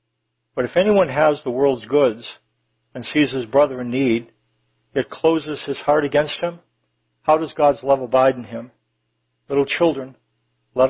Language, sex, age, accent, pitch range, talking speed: English, male, 60-79, American, 120-145 Hz, 160 wpm